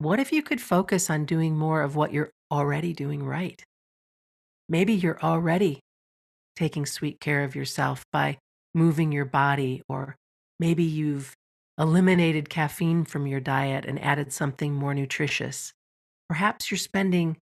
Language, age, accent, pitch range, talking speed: English, 50-69, American, 140-170 Hz, 145 wpm